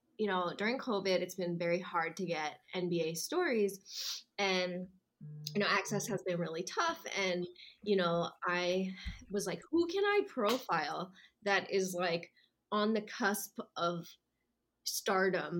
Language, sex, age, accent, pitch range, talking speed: English, female, 20-39, American, 170-205 Hz, 145 wpm